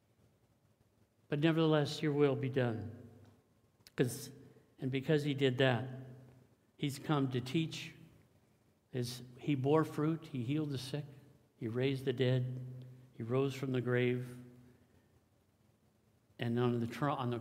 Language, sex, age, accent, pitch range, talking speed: English, male, 60-79, American, 115-140 Hz, 130 wpm